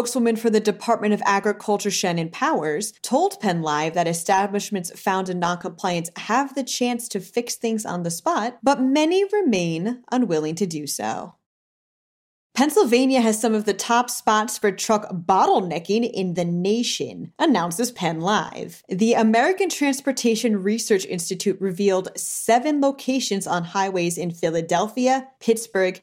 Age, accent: 30-49, American